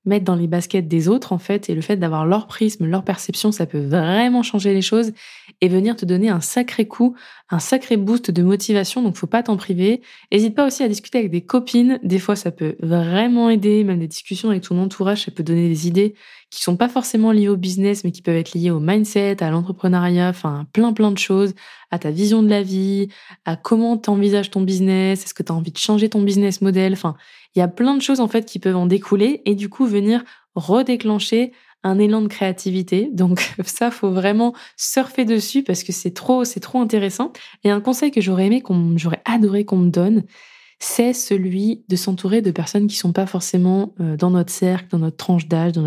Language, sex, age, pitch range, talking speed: French, female, 20-39, 180-220 Hz, 230 wpm